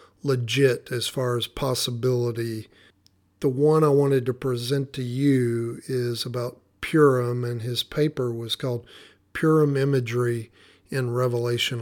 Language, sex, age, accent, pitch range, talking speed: English, male, 50-69, American, 120-135 Hz, 125 wpm